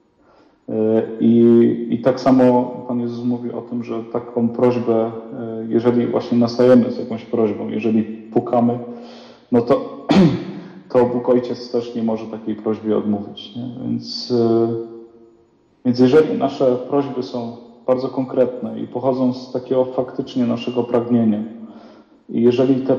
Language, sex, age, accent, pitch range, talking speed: Polish, male, 40-59, native, 115-130 Hz, 130 wpm